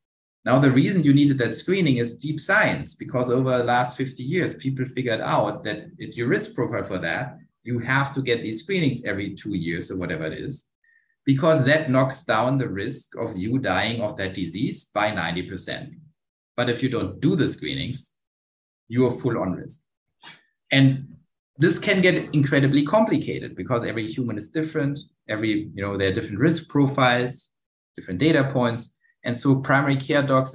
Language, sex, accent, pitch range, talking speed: English, male, German, 115-150 Hz, 180 wpm